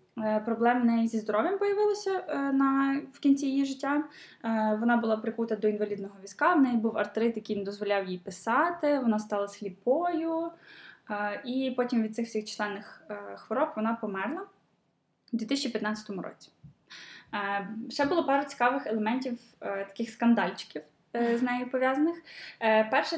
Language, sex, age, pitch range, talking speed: Ukrainian, female, 10-29, 215-265 Hz, 130 wpm